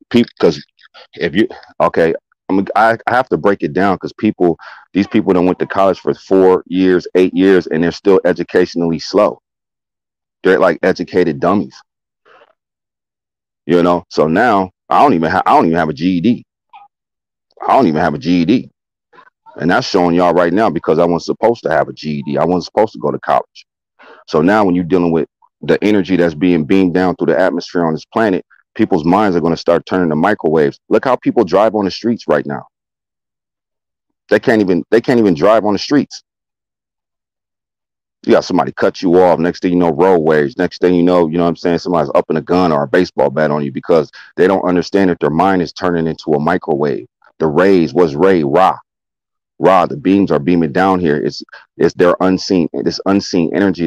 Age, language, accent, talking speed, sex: 40-59, English, American, 205 wpm, male